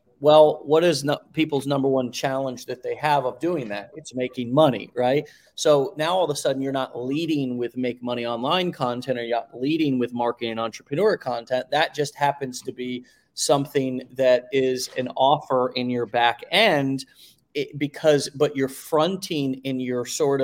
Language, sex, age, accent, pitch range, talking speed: English, male, 30-49, American, 125-155 Hz, 180 wpm